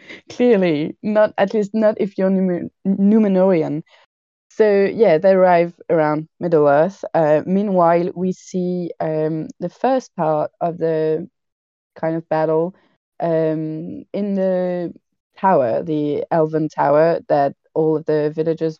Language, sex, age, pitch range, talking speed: English, female, 20-39, 155-185 Hz, 130 wpm